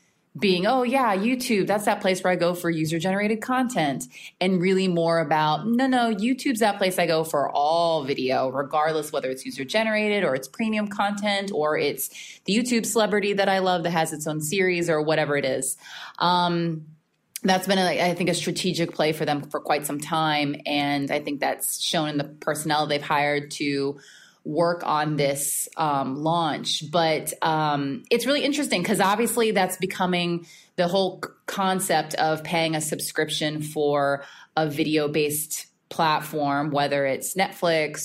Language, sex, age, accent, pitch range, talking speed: English, female, 20-39, American, 150-200 Hz, 165 wpm